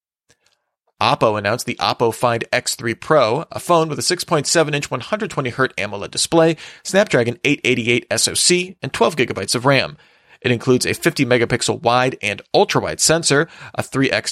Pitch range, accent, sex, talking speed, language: 120-160 Hz, American, male, 135 wpm, English